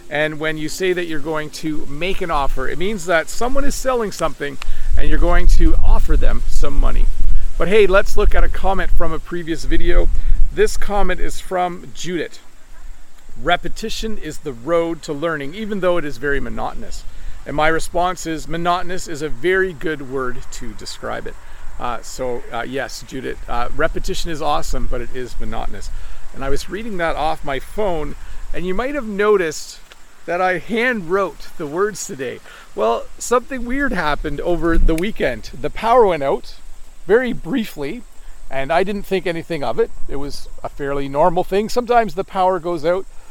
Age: 40-59